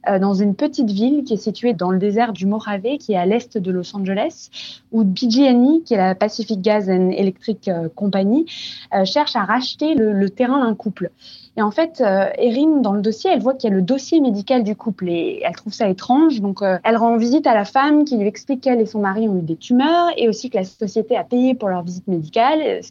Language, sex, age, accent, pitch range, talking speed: French, female, 20-39, French, 200-260 Hz, 245 wpm